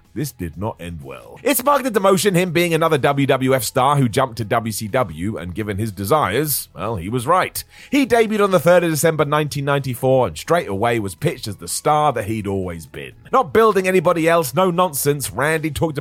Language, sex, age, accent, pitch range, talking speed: English, male, 30-49, British, 115-175 Hz, 200 wpm